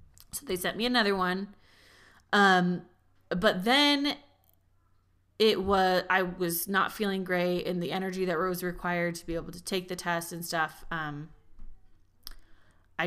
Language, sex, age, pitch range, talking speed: English, female, 20-39, 165-220 Hz, 150 wpm